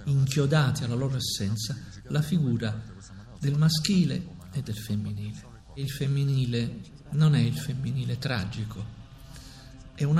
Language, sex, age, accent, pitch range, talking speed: Italian, male, 50-69, native, 105-145 Hz, 120 wpm